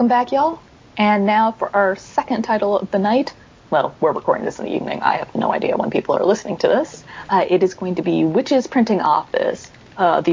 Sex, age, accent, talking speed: female, 30-49, American, 225 wpm